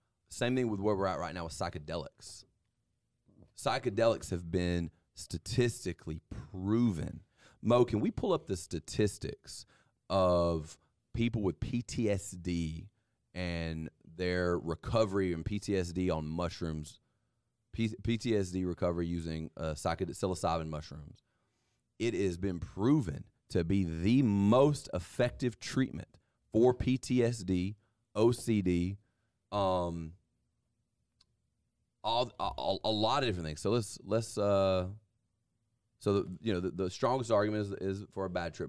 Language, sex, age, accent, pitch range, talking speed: English, male, 30-49, American, 85-110 Hz, 120 wpm